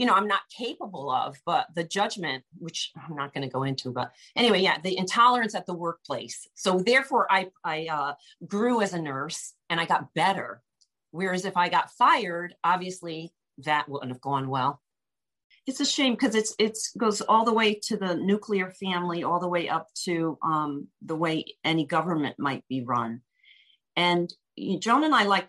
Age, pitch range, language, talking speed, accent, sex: 40-59, 150-205 Hz, English, 190 wpm, American, female